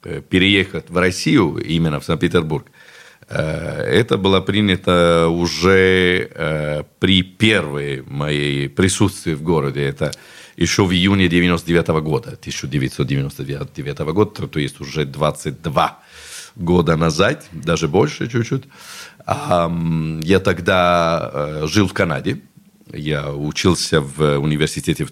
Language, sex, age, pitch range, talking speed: Russian, male, 40-59, 80-100 Hz, 100 wpm